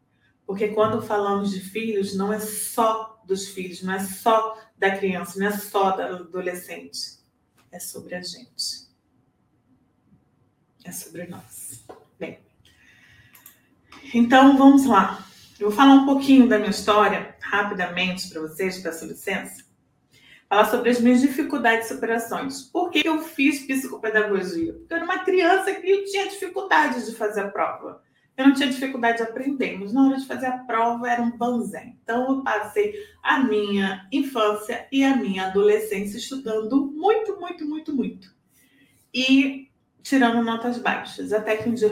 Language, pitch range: Portuguese, 195-260 Hz